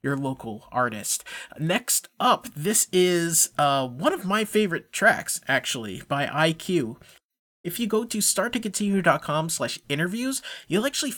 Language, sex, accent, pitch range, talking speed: English, male, American, 135-180 Hz, 140 wpm